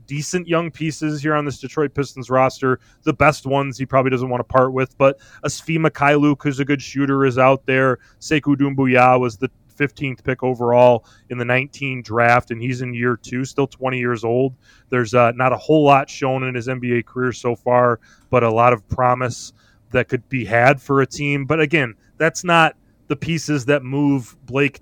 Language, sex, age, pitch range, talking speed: English, male, 20-39, 125-145 Hz, 200 wpm